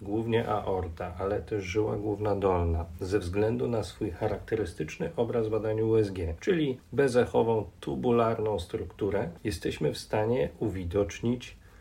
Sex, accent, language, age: male, native, Polish, 40-59